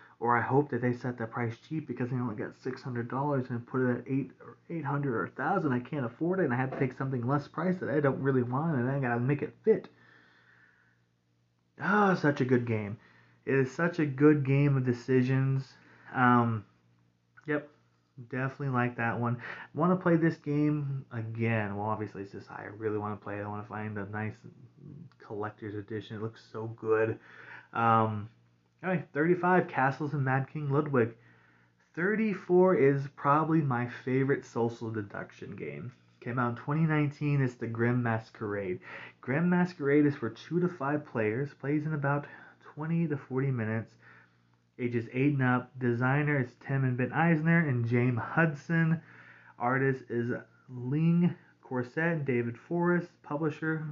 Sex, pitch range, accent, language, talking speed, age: male, 110-145 Hz, American, English, 175 wpm, 30-49